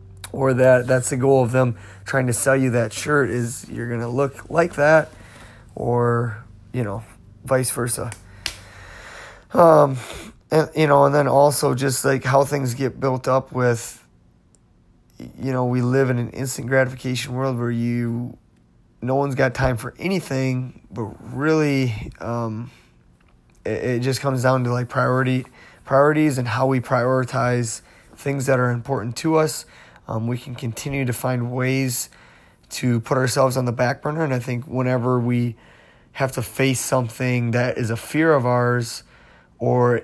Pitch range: 120-135 Hz